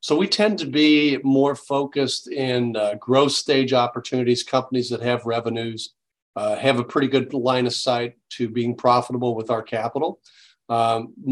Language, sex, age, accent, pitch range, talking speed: English, male, 40-59, American, 115-135 Hz, 165 wpm